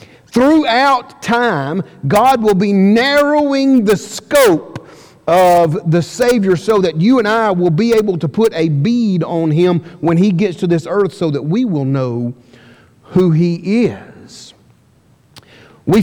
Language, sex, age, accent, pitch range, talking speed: English, male, 40-59, American, 160-215 Hz, 150 wpm